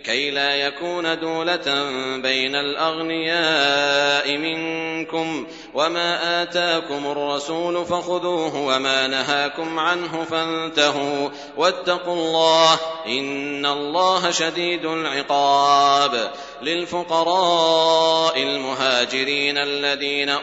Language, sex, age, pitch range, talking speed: Arabic, male, 40-59, 140-170 Hz, 70 wpm